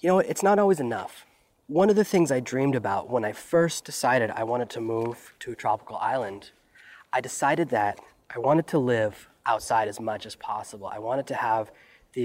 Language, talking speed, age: English, 205 wpm, 20-39